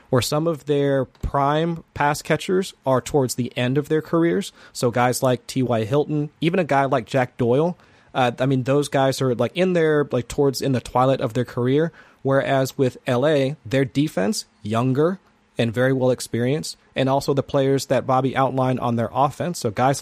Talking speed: 190 wpm